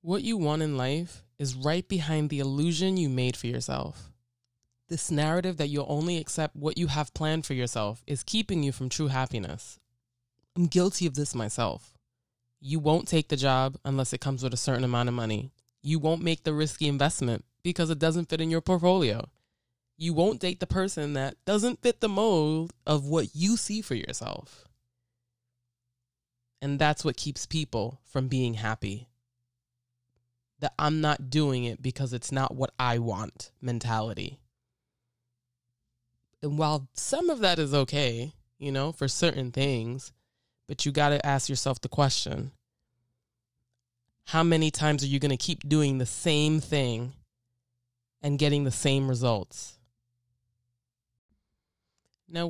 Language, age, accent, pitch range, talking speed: English, 20-39, American, 120-155 Hz, 160 wpm